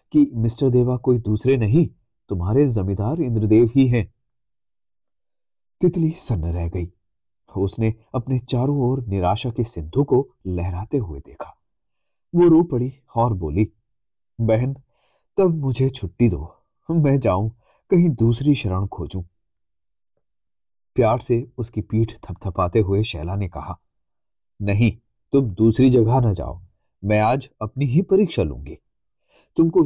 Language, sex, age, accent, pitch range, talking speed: Hindi, male, 30-49, native, 95-130 Hz, 130 wpm